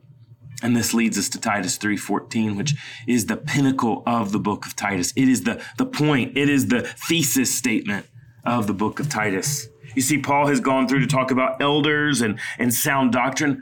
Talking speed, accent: 200 wpm, American